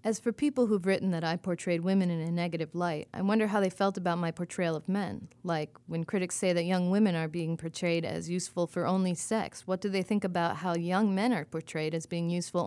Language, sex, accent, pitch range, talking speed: English, female, American, 165-195 Hz, 240 wpm